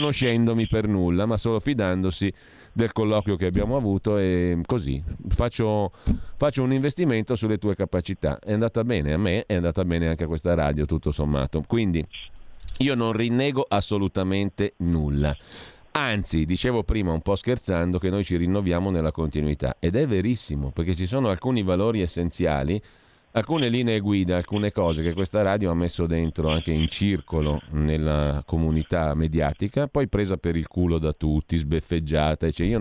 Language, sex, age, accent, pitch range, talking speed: Italian, male, 40-59, native, 80-115 Hz, 165 wpm